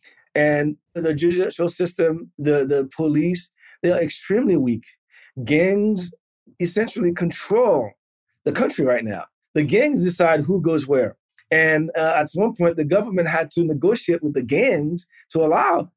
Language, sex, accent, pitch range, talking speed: English, male, American, 155-190 Hz, 145 wpm